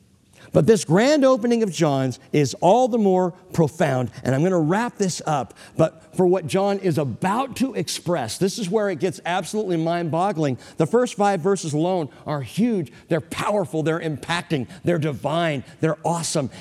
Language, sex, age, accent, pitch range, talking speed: English, male, 50-69, American, 105-165 Hz, 175 wpm